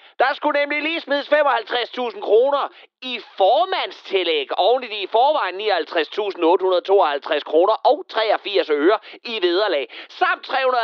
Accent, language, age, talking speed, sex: native, Danish, 30-49, 120 wpm, male